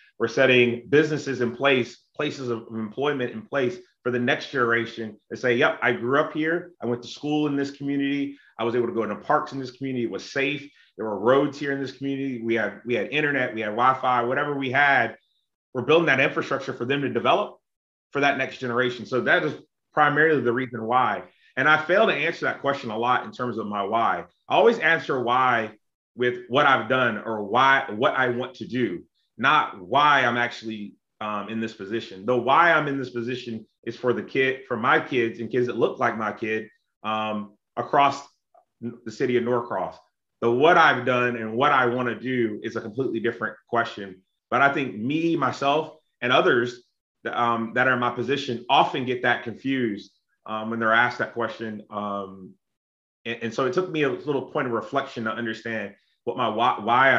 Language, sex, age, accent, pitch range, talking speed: English, male, 30-49, American, 115-140 Hz, 210 wpm